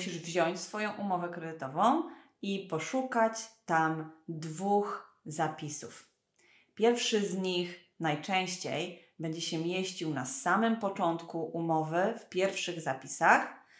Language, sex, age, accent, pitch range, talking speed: Polish, female, 30-49, native, 165-200 Hz, 105 wpm